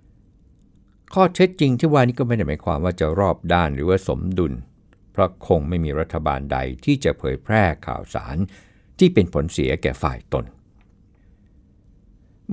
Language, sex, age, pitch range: Thai, male, 60-79, 80-105 Hz